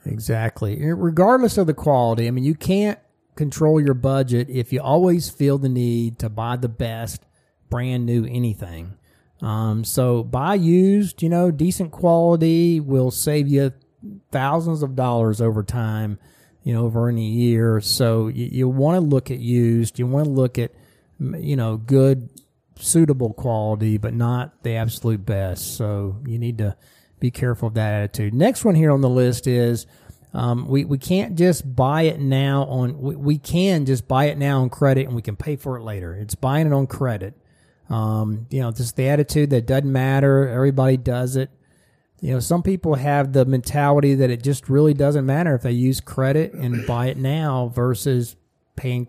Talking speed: 180 wpm